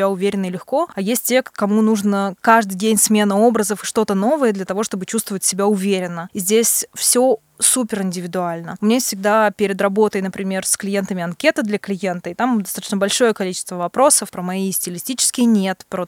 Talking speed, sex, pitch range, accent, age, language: 180 wpm, female, 190-220 Hz, native, 20-39, Russian